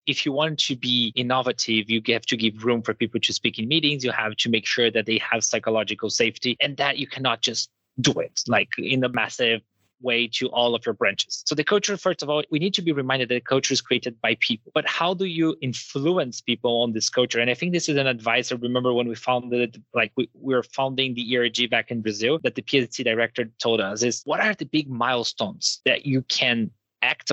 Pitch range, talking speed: 120-155 Hz, 235 wpm